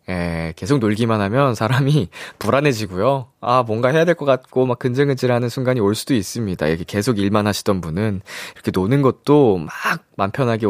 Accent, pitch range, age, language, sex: native, 100-155 Hz, 20-39, Korean, male